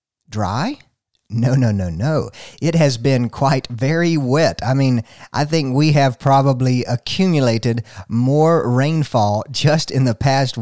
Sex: male